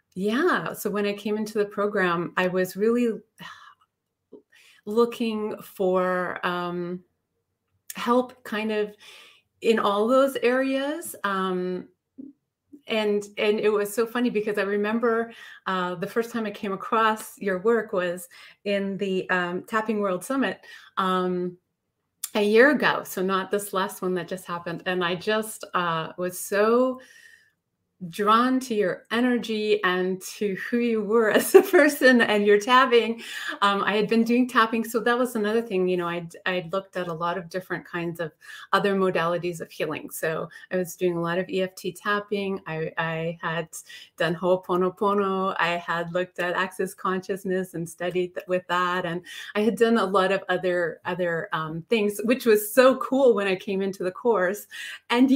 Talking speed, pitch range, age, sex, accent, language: 165 wpm, 180-230 Hz, 30-49, female, American, English